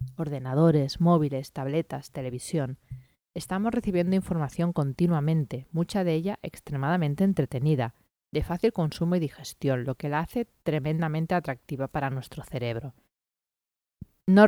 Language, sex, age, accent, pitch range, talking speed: Spanish, female, 30-49, Spanish, 140-175 Hz, 115 wpm